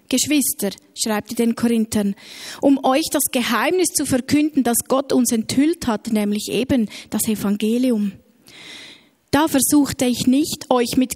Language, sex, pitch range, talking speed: German, female, 225-265 Hz, 140 wpm